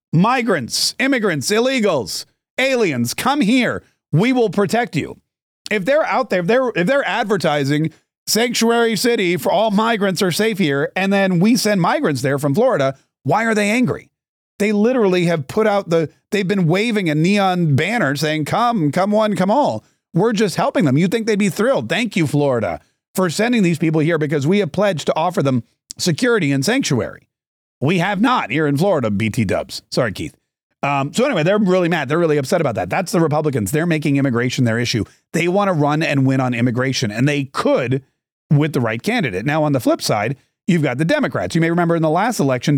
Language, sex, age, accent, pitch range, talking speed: English, male, 40-59, American, 145-215 Hz, 200 wpm